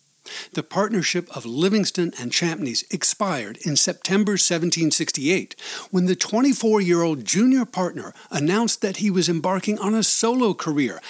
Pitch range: 155-210 Hz